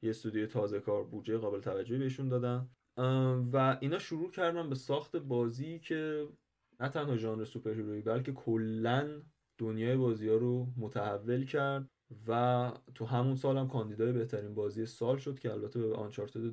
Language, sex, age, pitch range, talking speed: Persian, male, 20-39, 115-135 Hz, 155 wpm